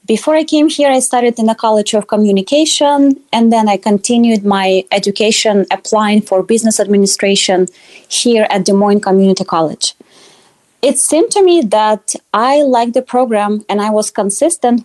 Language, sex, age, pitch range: English, female, 20-39, 205-260 Hz